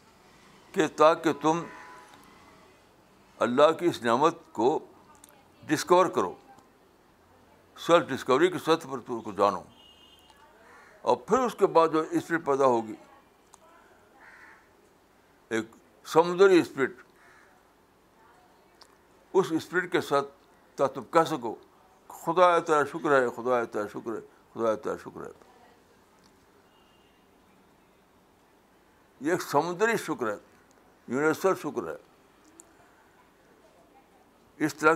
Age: 60-79